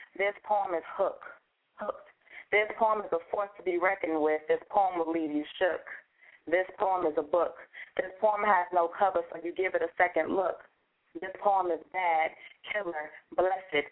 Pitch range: 160-195 Hz